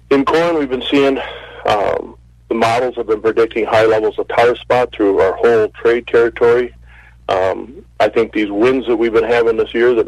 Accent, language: American, English